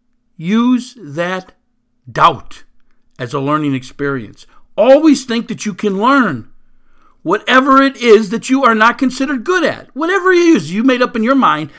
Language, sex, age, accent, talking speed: English, male, 60-79, American, 165 wpm